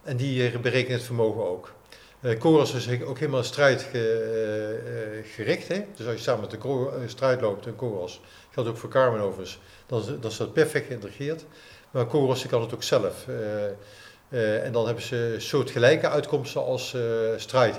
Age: 50-69